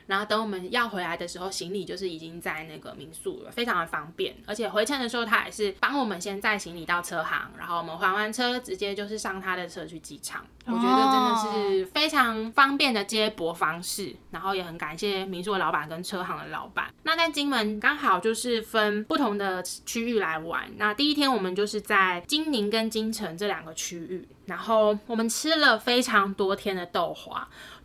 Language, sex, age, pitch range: Chinese, female, 10-29, 180-230 Hz